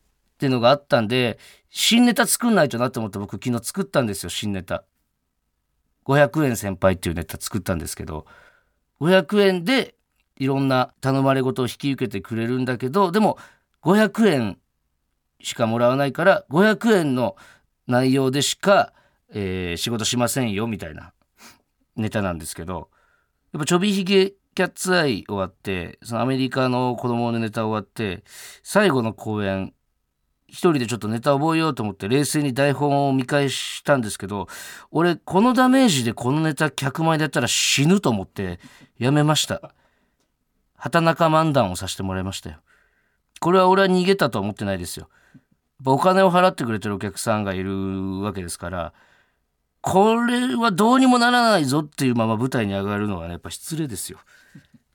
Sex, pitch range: male, 100-155 Hz